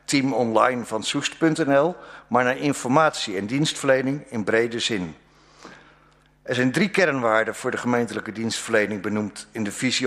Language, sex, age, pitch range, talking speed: Dutch, male, 50-69, 110-140 Hz, 145 wpm